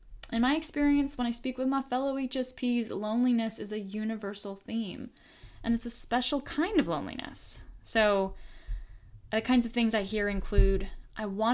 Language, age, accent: English, 10-29, American